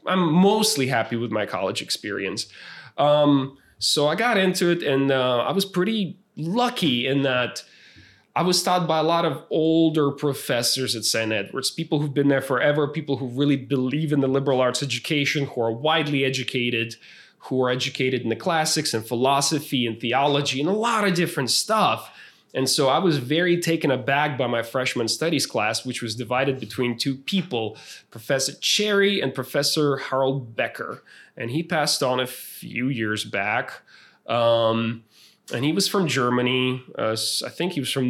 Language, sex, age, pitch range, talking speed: English, male, 20-39, 125-160 Hz, 175 wpm